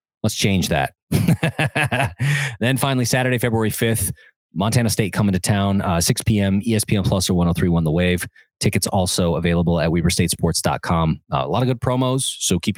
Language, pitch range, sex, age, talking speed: English, 100-145 Hz, male, 30-49, 170 wpm